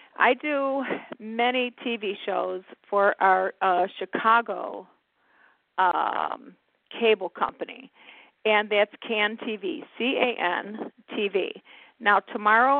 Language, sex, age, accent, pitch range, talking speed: English, female, 50-69, American, 210-255 Hz, 105 wpm